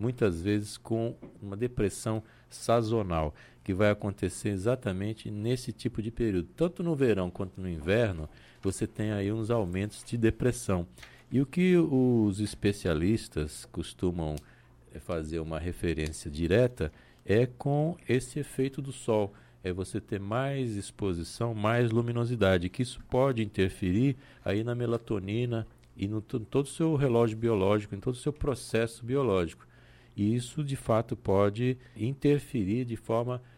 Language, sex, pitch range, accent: Portuguese, male, 95-125 Hz, Brazilian